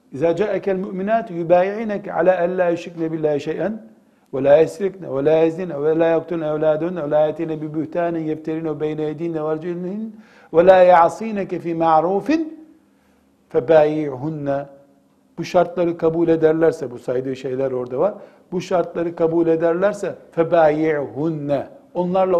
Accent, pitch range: native, 150-195 Hz